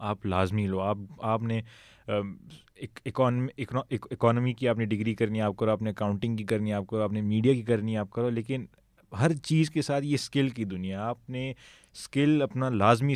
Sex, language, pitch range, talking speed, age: male, Urdu, 100-120 Hz, 185 wpm, 20-39